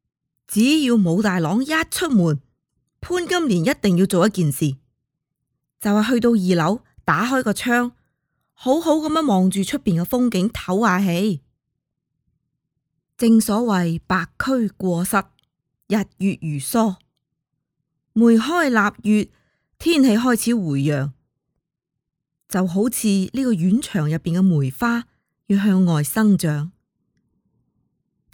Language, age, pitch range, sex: Chinese, 20-39, 155-220 Hz, female